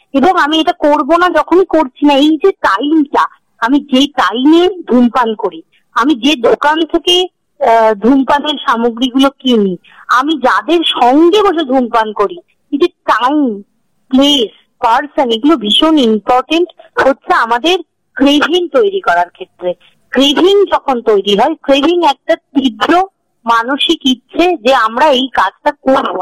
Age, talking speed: 50-69, 125 wpm